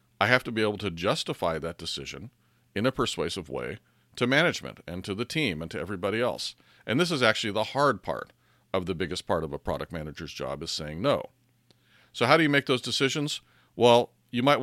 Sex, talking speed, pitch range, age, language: male, 215 wpm, 85-115 Hz, 40-59, English